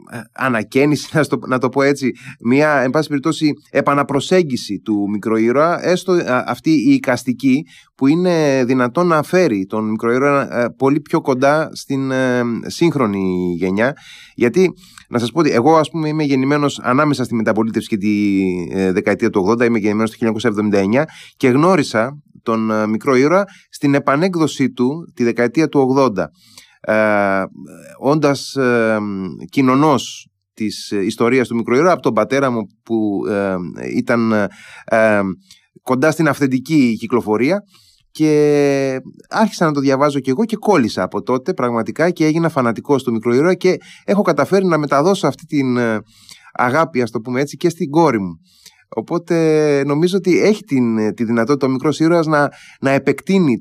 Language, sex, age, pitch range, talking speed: Greek, male, 20-39, 110-155 Hz, 140 wpm